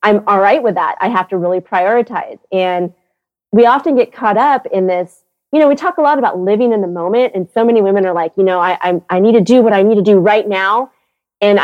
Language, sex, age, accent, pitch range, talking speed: English, female, 30-49, American, 185-245 Hz, 265 wpm